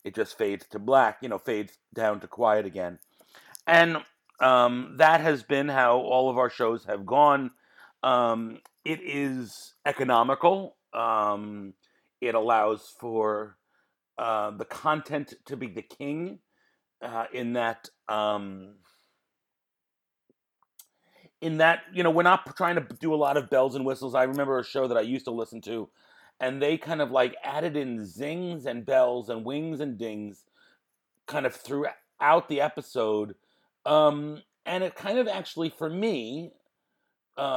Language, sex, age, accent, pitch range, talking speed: English, male, 40-59, American, 115-155 Hz, 150 wpm